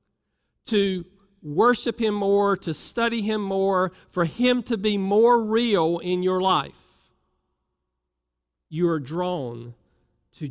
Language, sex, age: English, male, 50-69